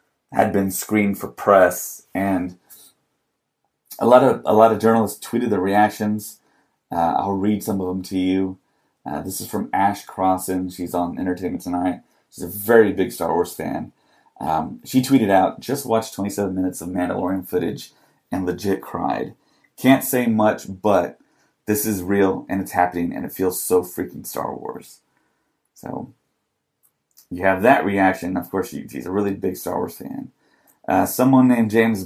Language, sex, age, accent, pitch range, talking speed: English, male, 30-49, American, 95-110 Hz, 170 wpm